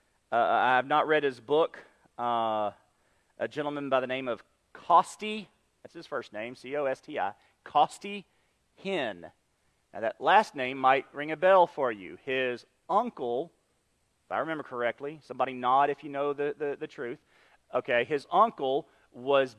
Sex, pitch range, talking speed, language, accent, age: male, 135-190 Hz, 155 wpm, English, American, 40-59